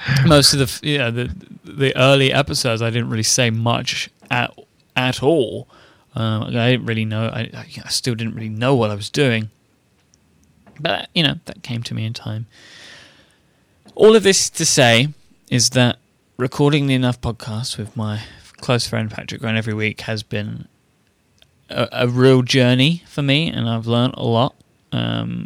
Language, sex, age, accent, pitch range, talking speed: English, male, 20-39, British, 110-130 Hz, 170 wpm